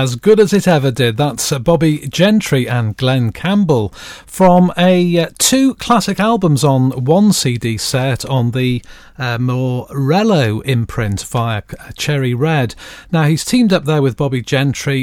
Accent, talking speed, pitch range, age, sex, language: British, 150 wpm, 125-175 Hz, 40-59, male, English